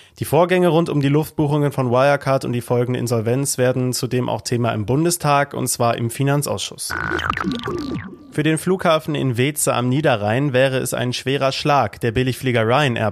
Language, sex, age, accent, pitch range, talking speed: German, male, 30-49, German, 115-145 Hz, 170 wpm